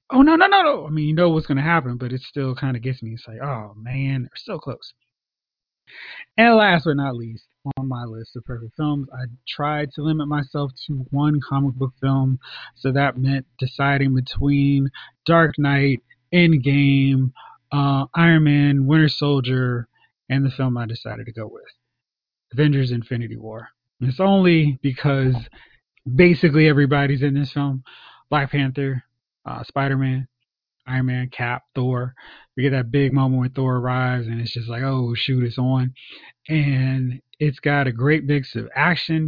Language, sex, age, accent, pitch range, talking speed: English, male, 20-39, American, 125-140 Hz, 175 wpm